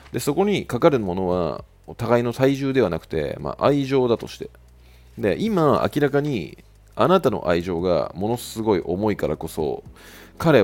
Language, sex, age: Japanese, male, 40-59